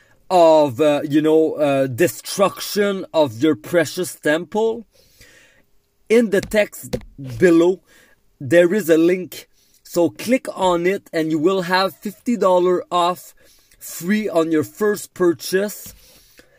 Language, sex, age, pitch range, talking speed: English, male, 40-59, 155-200 Hz, 120 wpm